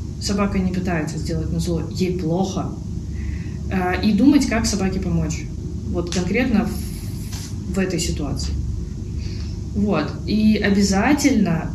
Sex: female